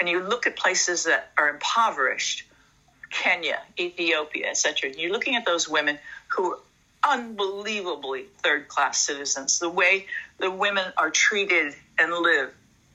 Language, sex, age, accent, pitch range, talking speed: English, female, 60-79, American, 160-205 Hz, 135 wpm